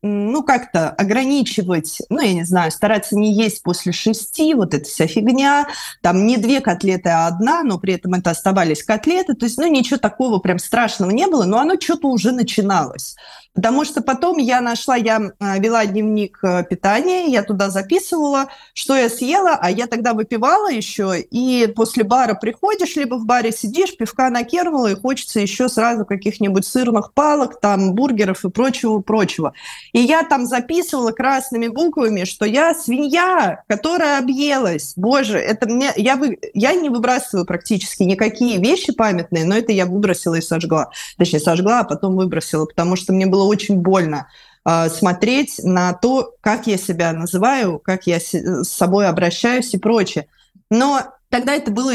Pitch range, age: 190-260 Hz, 20-39